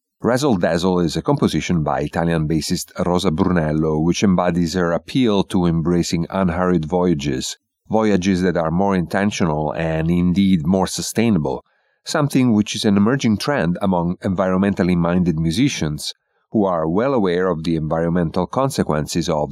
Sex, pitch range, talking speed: male, 80-100 Hz, 140 wpm